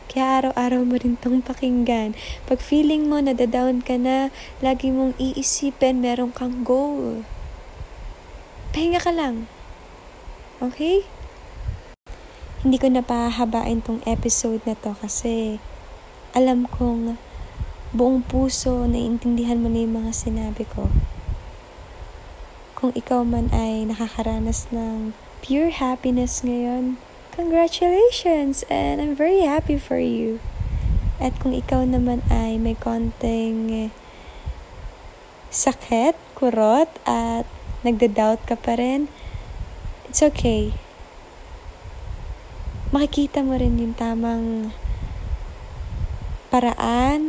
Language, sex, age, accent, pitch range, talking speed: English, female, 20-39, Filipino, 220-265 Hz, 100 wpm